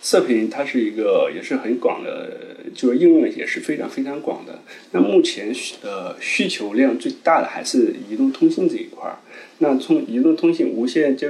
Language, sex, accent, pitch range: Chinese, male, native, 250-335 Hz